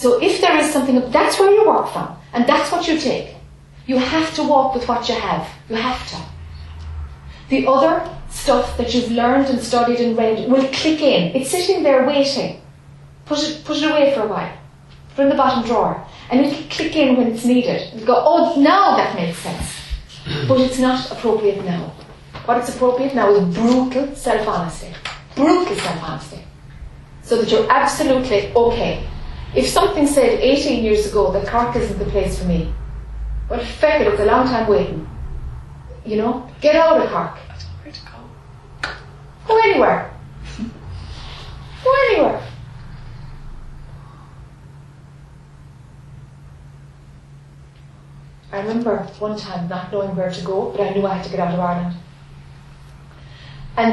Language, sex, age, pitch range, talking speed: English, female, 30-49, 170-265 Hz, 160 wpm